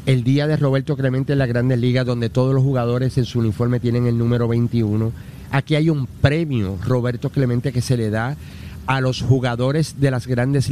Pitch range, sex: 120-145 Hz, male